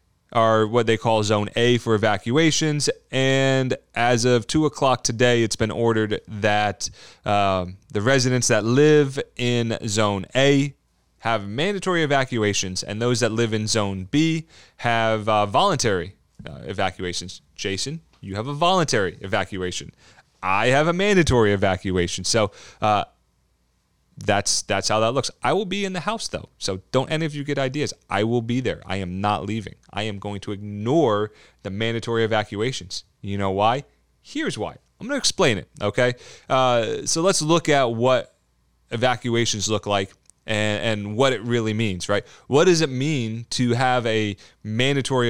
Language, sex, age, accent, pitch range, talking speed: English, male, 30-49, American, 100-130 Hz, 165 wpm